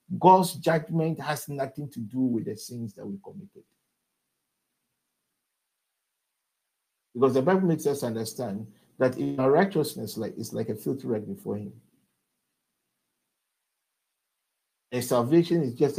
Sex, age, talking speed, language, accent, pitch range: male, 50-69, 130 wpm, English, Nigerian, 120-150 Hz